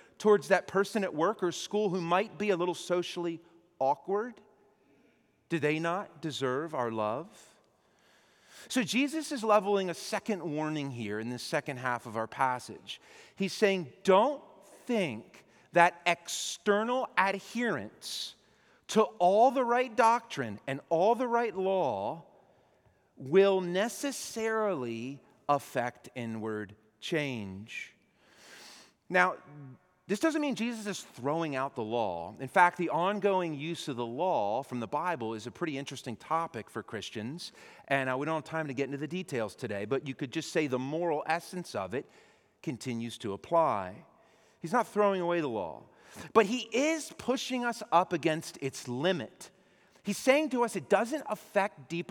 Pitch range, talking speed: 140-210 Hz, 150 wpm